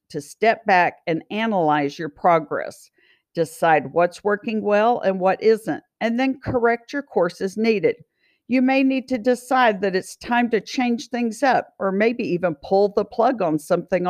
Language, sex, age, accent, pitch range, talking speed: English, female, 50-69, American, 165-235 Hz, 175 wpm